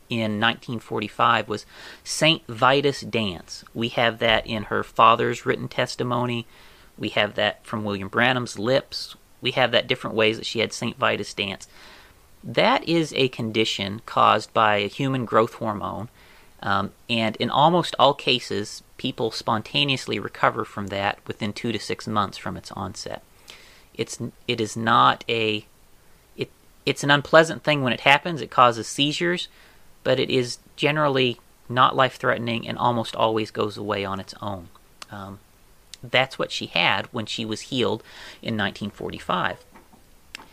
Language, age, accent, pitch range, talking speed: English, 30-49, American, 105-130 Hz, 150 wpm